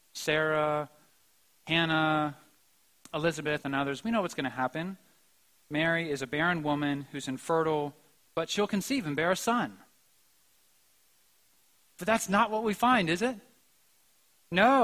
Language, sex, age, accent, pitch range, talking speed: English, male, 30-49, American, 155-220 Hz, 140 wpm